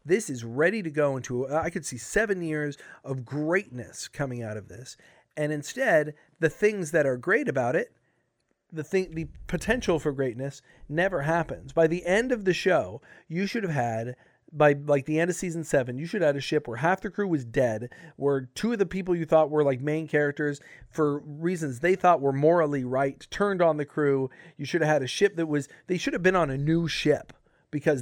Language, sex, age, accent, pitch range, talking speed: English, male, 40-59, American, 140-175 Hz, 220 wpm